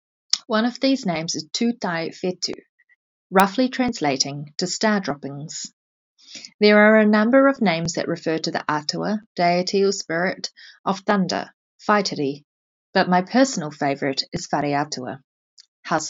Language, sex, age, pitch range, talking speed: English, female, 30-49, 160-215 Hz, 135 wpm